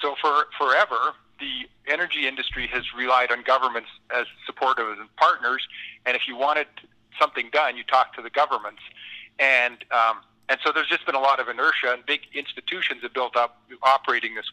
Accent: American